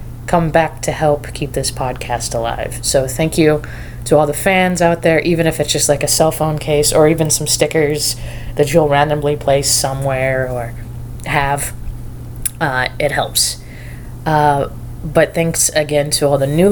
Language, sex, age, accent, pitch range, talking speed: English, female, 20-39, American, 125-155 Hz, 170 wpm